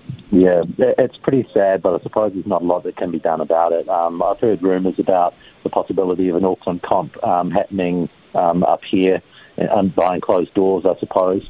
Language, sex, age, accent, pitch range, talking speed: English, male, 40-59, Australian, 90-110 Hz, 210 wpm